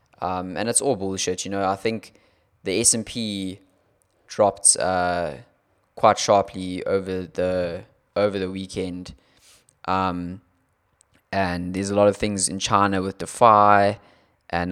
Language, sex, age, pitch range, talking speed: English, male, 20-39, 90-100 Hz, 130 wpm